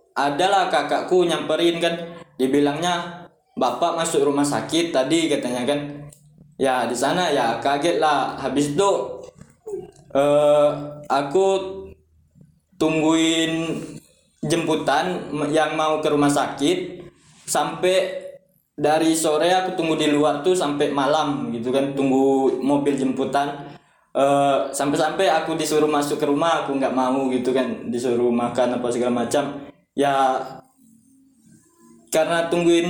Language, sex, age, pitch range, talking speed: Indonesian, male, 20-39, 130-165 Hz, 115 wpm